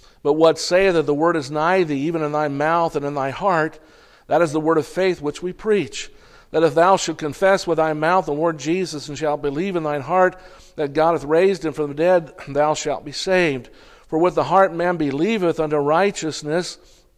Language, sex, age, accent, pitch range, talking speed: English, male, 50-69, American, 150-180 Hz, 220 wpm